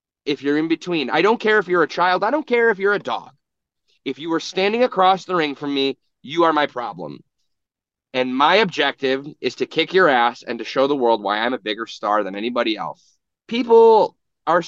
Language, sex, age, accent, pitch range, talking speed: English, male, 30-49, American, 140-215 Hz, 220 wpm